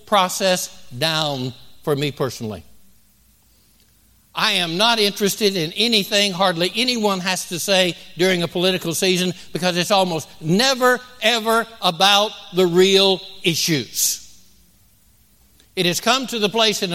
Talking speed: 130 wpm